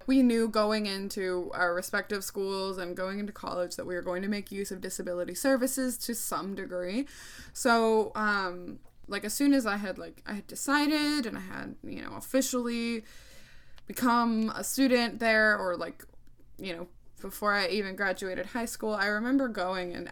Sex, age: female, 20-39